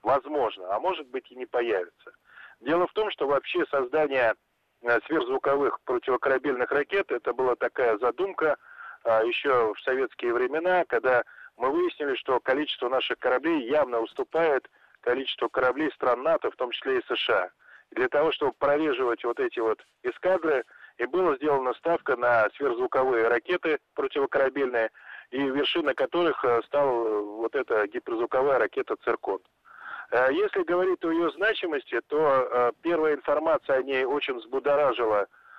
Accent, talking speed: native, 135 wpm